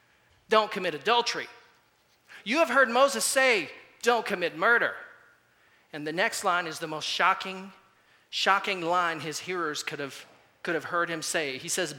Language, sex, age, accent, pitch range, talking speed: English, male, 40-59, American, 180-235 Hz, 160 wpm